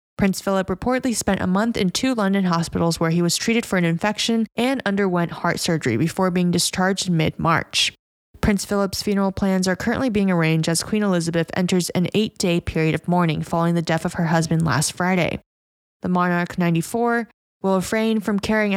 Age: 10-29